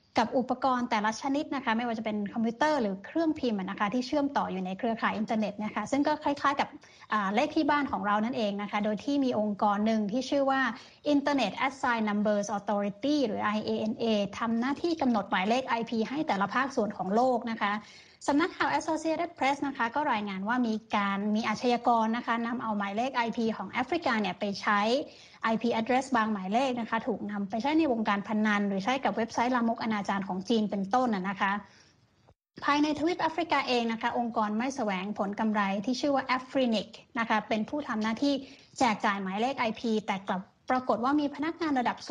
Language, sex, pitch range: Thai, female, 210-260 Hz